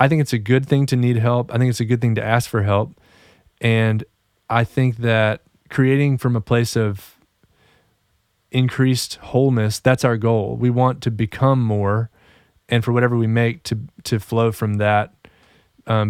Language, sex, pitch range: English, male, 110-125 Hz